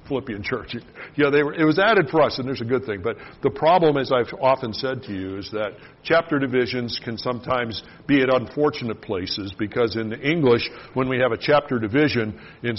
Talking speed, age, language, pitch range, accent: 215 wpm, 50-69, English, 110-135 Hz, American